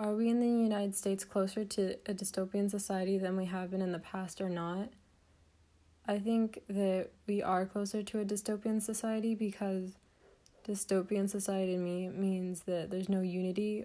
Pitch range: 185-210 Hz